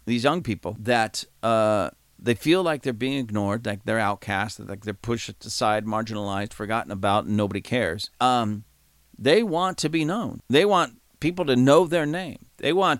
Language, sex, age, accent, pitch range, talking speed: English, male, 50-69, American, 100-135 Hz, 180 wpm